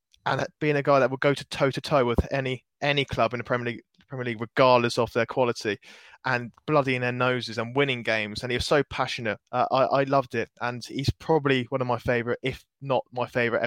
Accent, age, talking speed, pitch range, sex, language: British, 20-39, 230 wpm, 115-135 Hz, male, English